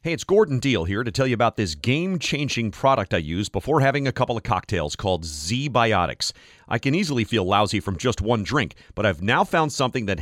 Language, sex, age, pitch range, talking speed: English, male, 40-59, 95-130 Hz, 215 wpm